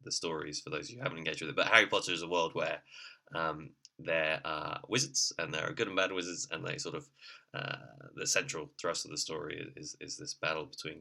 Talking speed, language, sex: 235 wpm, English, male